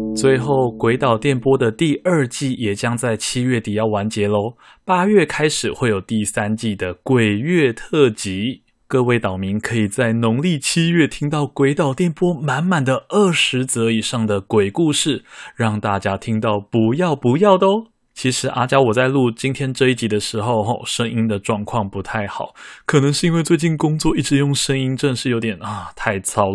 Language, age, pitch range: Chinese, 20-39, 105-140 Hz